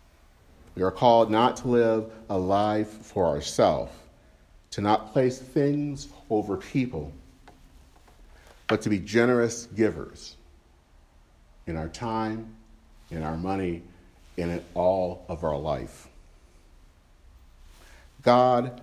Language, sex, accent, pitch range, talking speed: English, male, American, 75-110 Hz, 105 wpm